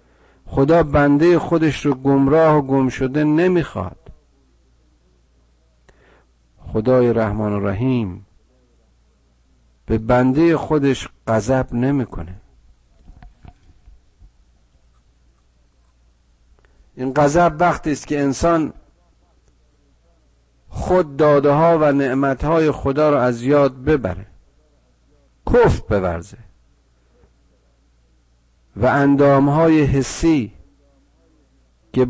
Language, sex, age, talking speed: Persian, male, 50-69, 80 wpm